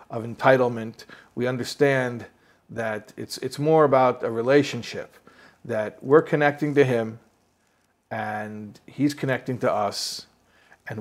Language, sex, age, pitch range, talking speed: English, male, 50-69, 115-145 Hz, 120 wpm